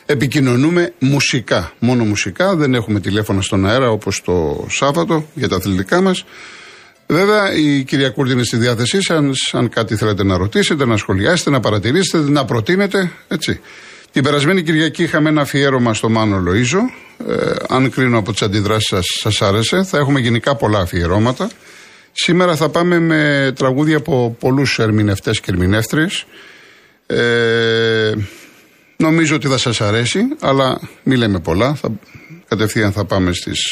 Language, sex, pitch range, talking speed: Greek, male, 105-145 Hz, 145 wpm